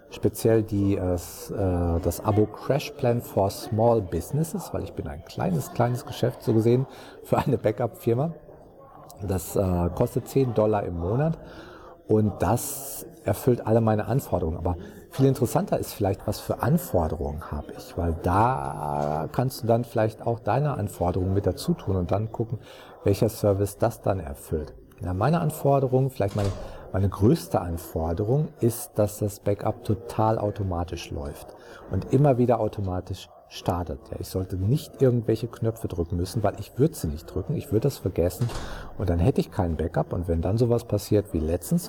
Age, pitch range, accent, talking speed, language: 40-59, 90-125 Hz, German, 165 wpm, German